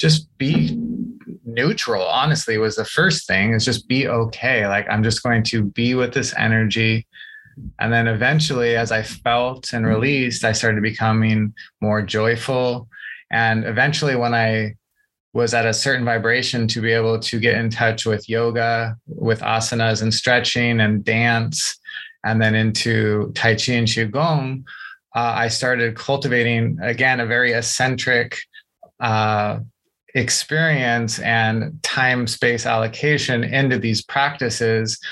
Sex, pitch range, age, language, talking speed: male, 115-135 Hz, 20-39, English, 140 wpm